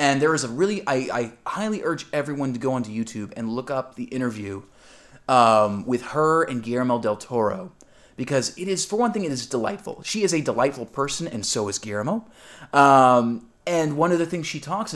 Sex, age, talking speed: male, 20-39, 210 wpm